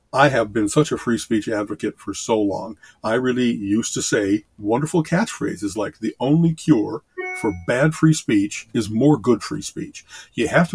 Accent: American